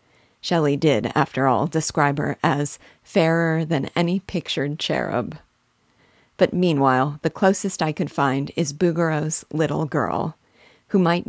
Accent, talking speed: American, 135 wpm